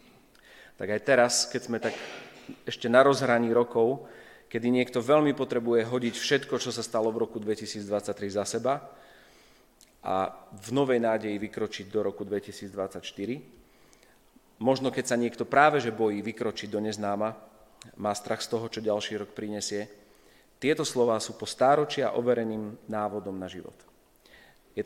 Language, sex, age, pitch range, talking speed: Slovak, male, 40-59, 105-125 Hz, 145 wpm